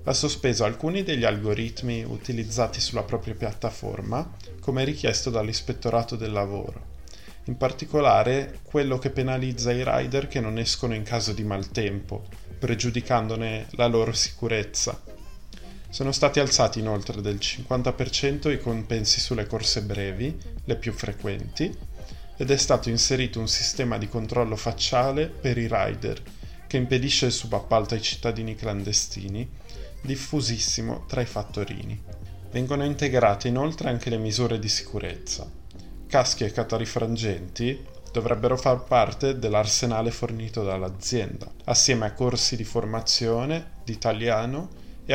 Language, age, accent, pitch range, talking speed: Italian, 20-39, native, 105-125 Hz, 125 wpm